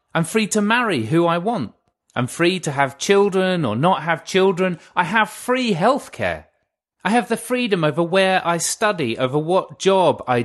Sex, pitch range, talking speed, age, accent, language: male, 125-190 Hz, 190 wpm, 30-49, British, English